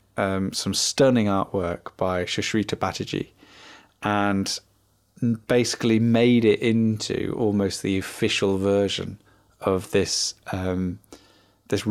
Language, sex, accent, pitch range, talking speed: English, male, British, 95-115 Hz, 100 wpm